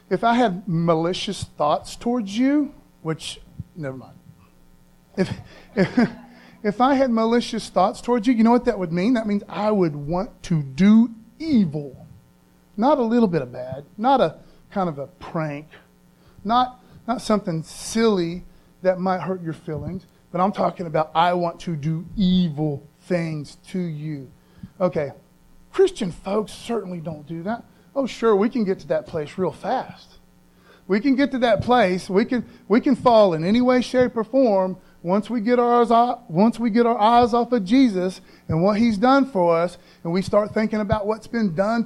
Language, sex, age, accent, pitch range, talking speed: English, male, 30-49, American, 175-235 Hz, 180 wpm